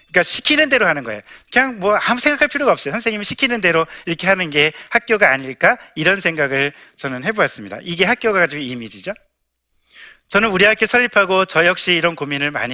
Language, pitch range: Korean, 145-205 Hz